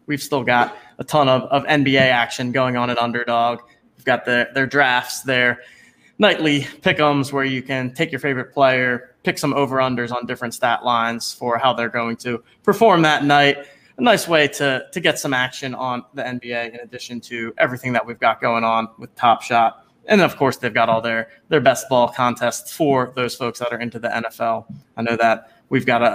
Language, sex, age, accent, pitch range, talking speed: English, male, 20-39, American, 120-140 Hz, 210 wpm